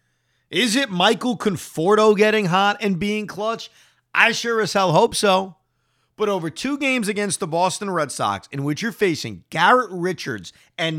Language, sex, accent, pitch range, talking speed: English, male, American, 130-215 Hz, 170 wpm